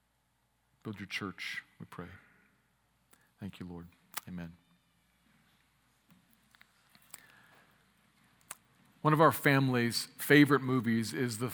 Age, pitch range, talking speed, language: 40-59, 105-130 Hz, 90 wpm, English